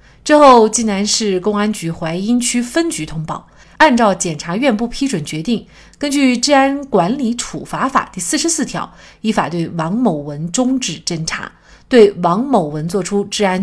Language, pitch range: Chinese, 175-260 Hz